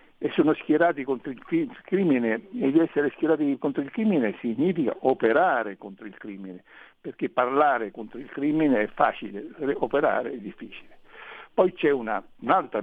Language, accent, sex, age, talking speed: Italian, native, male, 60-79, 150 wpm